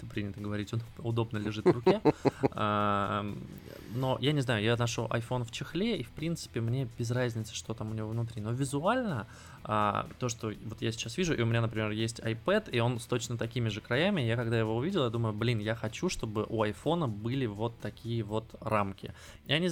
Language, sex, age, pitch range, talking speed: Russian, male, 20-39, 105-120 Hz, 205 wpm